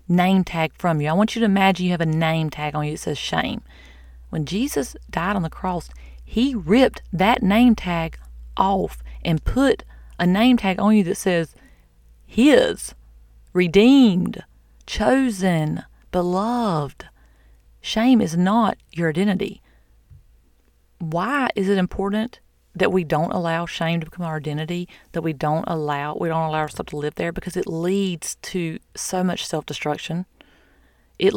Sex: female